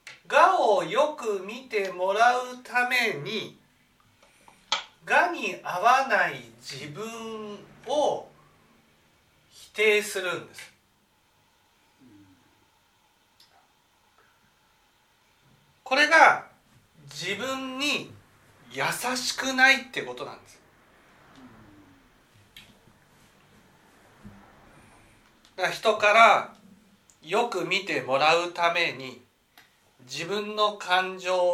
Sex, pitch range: male, 165-245 Hz